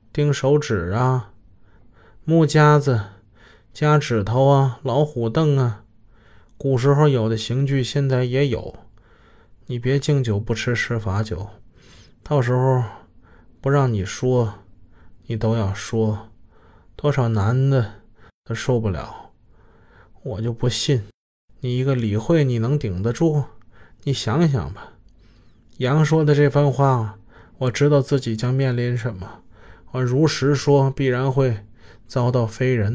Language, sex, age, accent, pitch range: Chinese, male, 20-39, native, 110-140 Hz